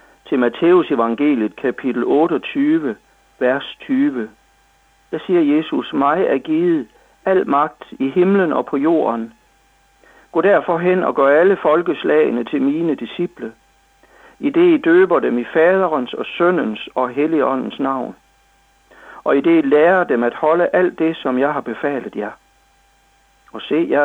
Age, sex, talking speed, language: 60-79, male, 150 wpm, Danish